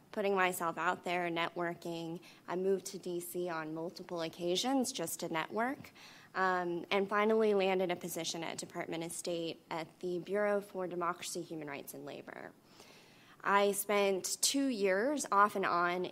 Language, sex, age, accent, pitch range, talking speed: English, female, 20-39, American, 170-195 Hz, 155 wpm